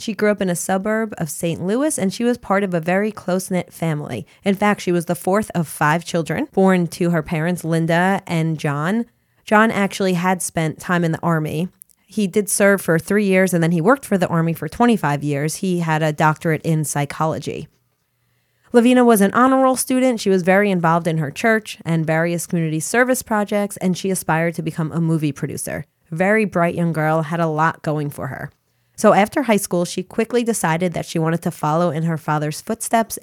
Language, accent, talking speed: English, American, 210 wpm